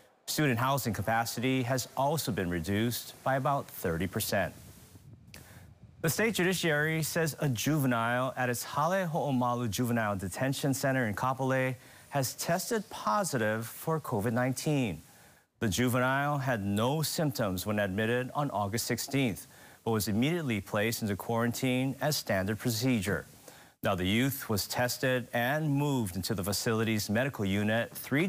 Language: English